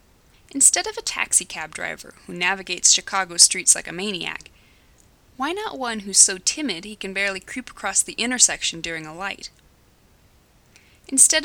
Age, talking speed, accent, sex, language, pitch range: 20-39, 150 wpm, American, female, English, 180-260 Hz